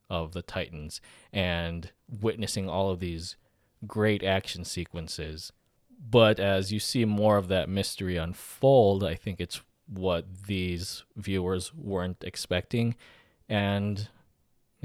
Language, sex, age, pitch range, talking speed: English, male, 20-39, 90-110 Hz, 120 wpm